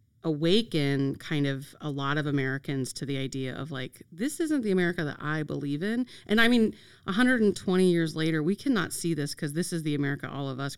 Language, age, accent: English, 30-49, American